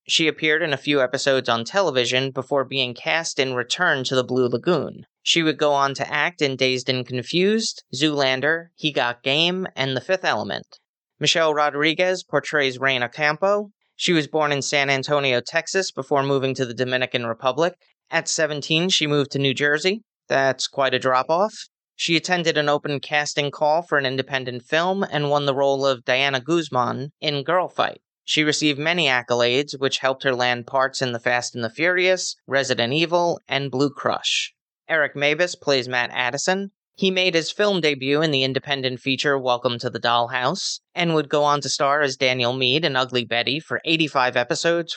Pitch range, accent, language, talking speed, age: 130-160 Hz, American, English, 180 wpm, 30-49